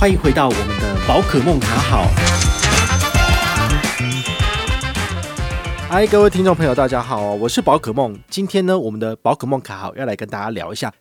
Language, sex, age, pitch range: Chinese, male, 30-49, 110-150 Hz